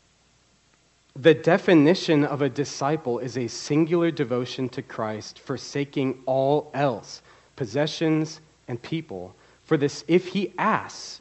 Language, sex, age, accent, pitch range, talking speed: English, male, 40-59, American, 115-150 Hz, 120 wpm